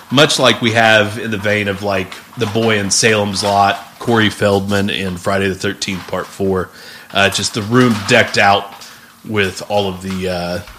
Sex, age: male, 30-49